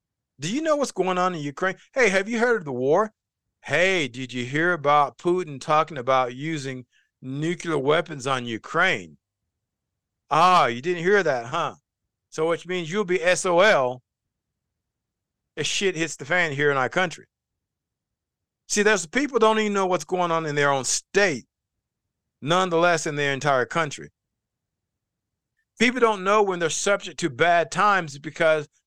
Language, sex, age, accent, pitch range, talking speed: English, male, 40-59, American, 140-190 Hz, 160 wpm